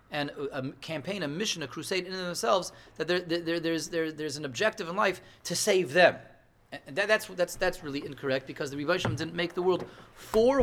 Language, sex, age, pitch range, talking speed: English, male, 30-49, 140-190 Hz, 215 wpm